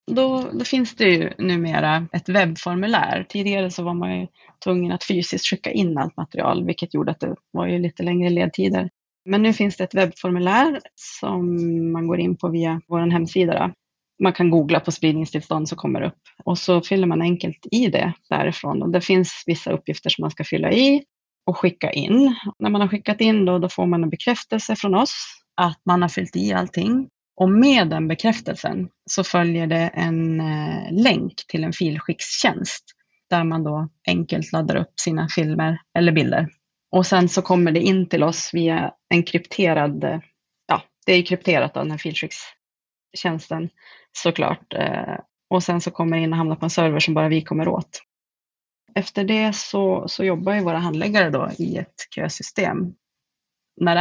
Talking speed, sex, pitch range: 180 wpm, female, 165-190 Hz